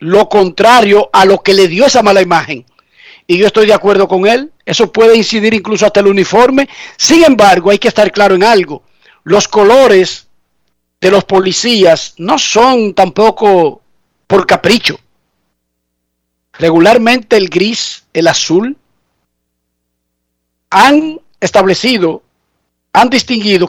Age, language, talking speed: 50-69, Spanish, 130 wpm